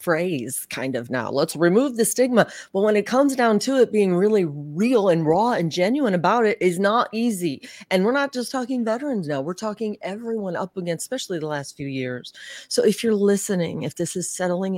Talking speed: 215 wpm